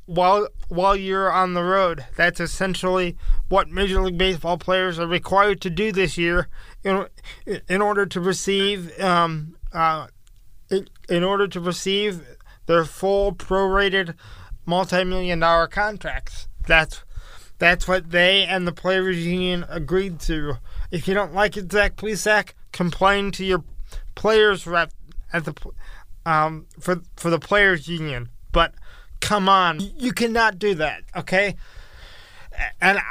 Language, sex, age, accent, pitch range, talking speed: English, male, 20-39, American, 155-195 Hz, 140 wpm